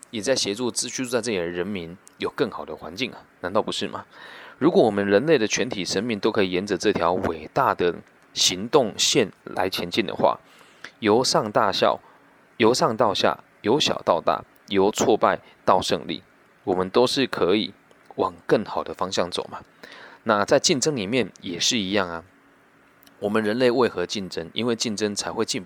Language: Chinese